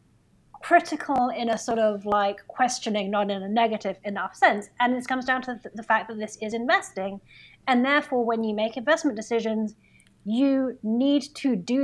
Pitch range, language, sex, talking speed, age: 215-265 Hz, English, female, 180 wpm, 30-49